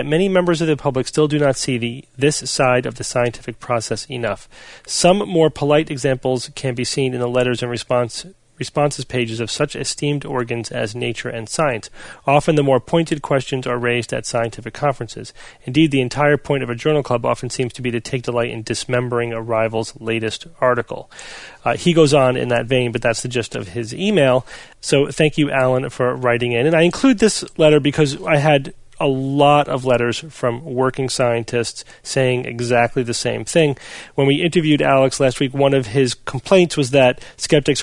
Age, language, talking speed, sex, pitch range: 30-49, English, 195 wpm, male, 120-145 Hz